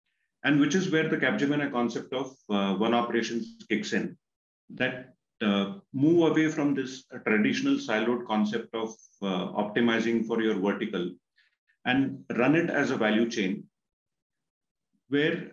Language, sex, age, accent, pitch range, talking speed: English, male, 40-59, Indian, 110-145 Hz, 145 wpm